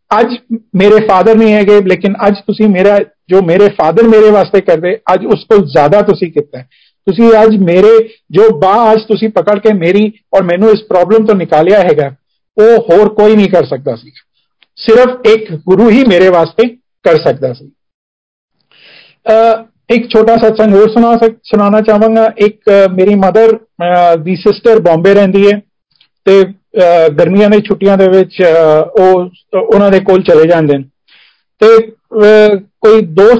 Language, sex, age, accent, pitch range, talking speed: Hindi, male, 50-69, native, 185-225 Hz, 120 wpm